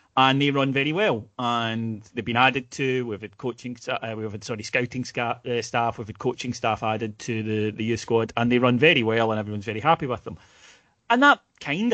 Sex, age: male, 30-49